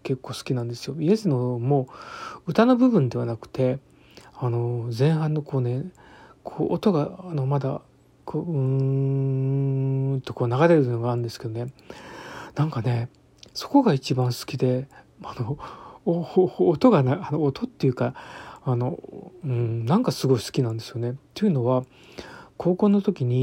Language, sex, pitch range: Japanese, male, 125-155 Hz